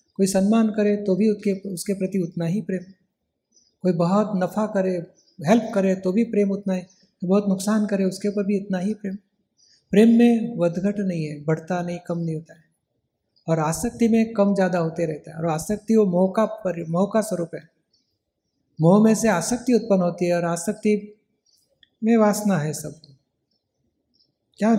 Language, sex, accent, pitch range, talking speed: Hindi, male, native, 175-210 Hz, 175 wpm